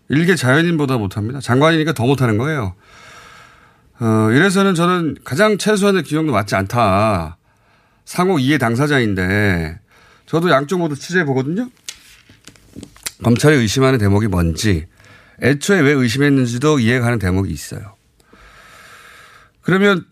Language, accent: Korean, native